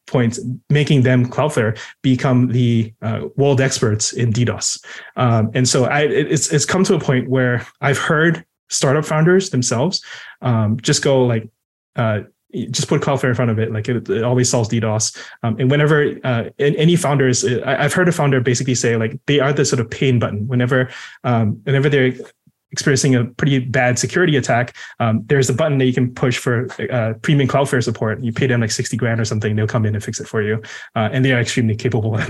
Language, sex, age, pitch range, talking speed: English, male, 20-39, 115-140 Hz, 210 wpm